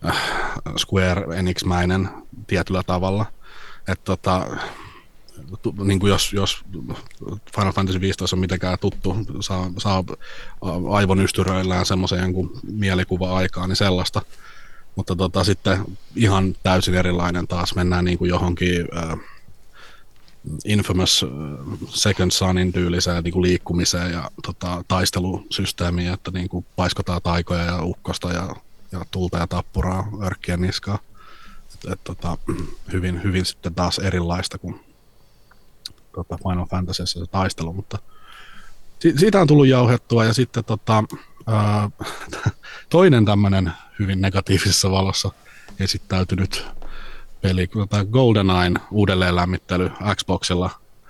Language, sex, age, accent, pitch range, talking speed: Finnish, male, 30-49, native, 90-100 Hz, 110 wpm